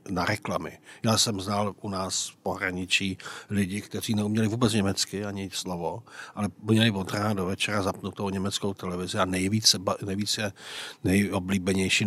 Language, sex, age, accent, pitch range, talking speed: Czech, male, 50-69, native, 95-110 Hz, 140 wpm